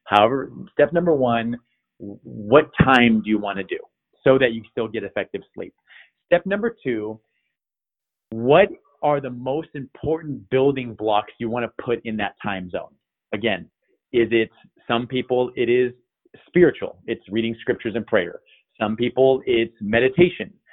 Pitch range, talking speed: 115-170 Hz, 155 wpm